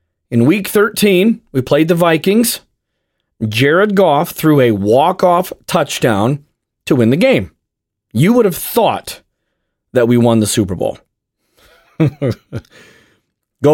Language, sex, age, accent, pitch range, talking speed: English, male, 40-59, American, 120-175 Hz, 120 wpm